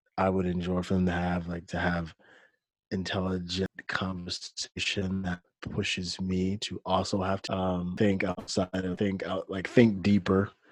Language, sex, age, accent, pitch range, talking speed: English, male, 20-39, American, 90-95 Hz, 155 wpm